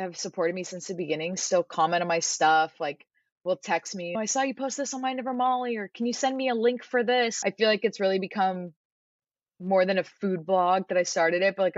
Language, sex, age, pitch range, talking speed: English, female, 20-39, 165-215 Hz, 260 wpm